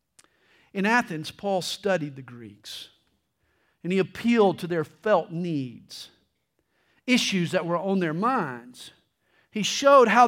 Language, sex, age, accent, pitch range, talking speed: English, male, 50-69, American, 180-240 Hz, 130 wpm